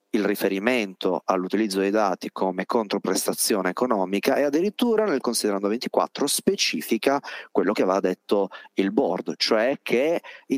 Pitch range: 95-120 Hz